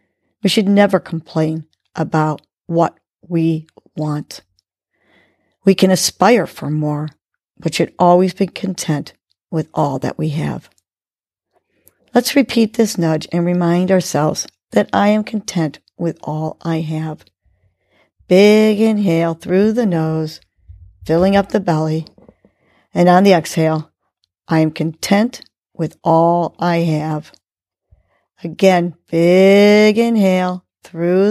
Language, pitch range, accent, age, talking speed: English, 155-195 Hz, American, 50-69, 120 wpm